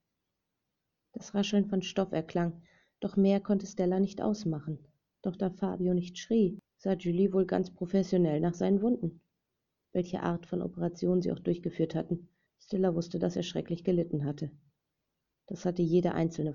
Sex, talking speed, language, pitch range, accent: female, 155 wpm, German, 165-195 Hz, German